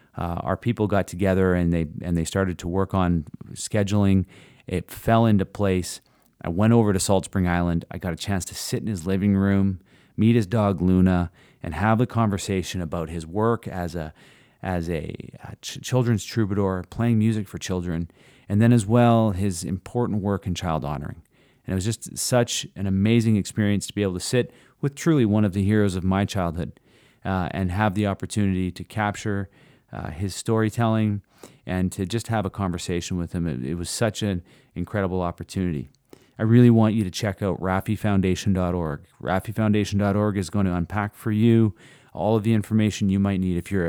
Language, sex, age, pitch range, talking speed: English, male, 30-49, 90-110 Hz, 190 wpm